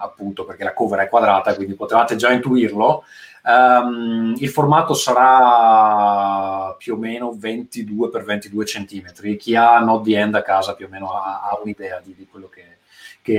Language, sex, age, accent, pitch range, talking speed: Italian, male, 30-49, native, 110-140 Hz, 170 wpm